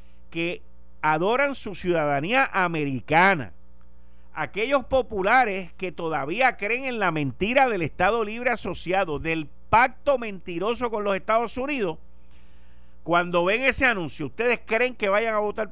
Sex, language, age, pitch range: male, Spanish, 50-69, 135-220 Hz